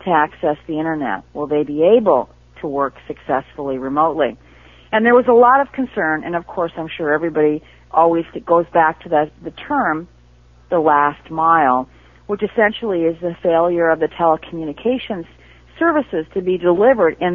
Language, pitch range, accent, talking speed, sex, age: English, 150-210 Hz, American, 165 wpm, female, 50-69